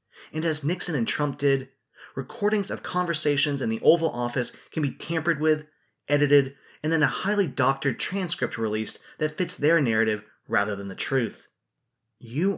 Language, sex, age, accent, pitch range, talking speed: English, male, 20-39, American, 125-165 Hz, 160 wpm